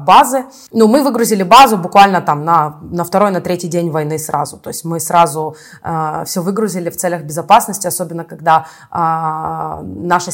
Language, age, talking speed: Russian, 20-39, 175 wpm